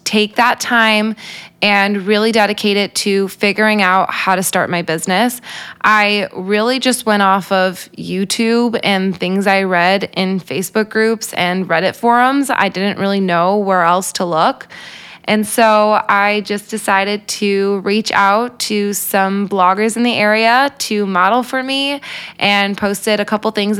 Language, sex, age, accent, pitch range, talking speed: English, female, 20-39, American, 190-215 Hz, 160 wpm